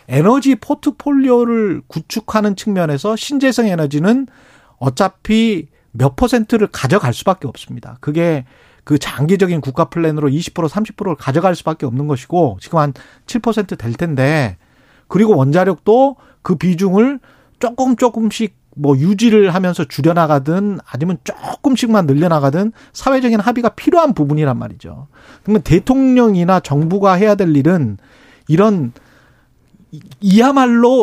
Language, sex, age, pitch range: Korean, male, 40-59, 145-220 Hz